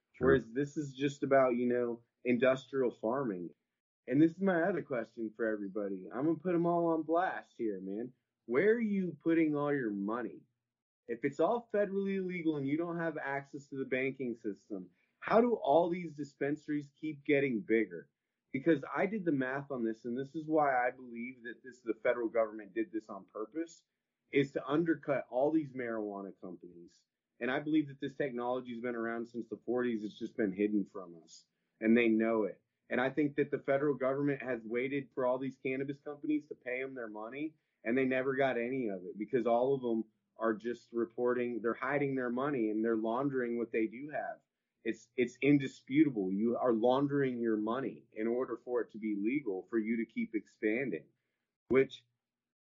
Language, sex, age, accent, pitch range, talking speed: English, male, 20-39, American, 115-150 Hz, 195 wpm